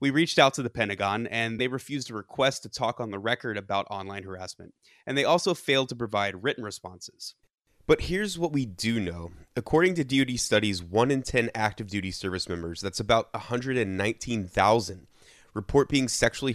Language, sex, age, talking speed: English, male, 20-39, 180 wpm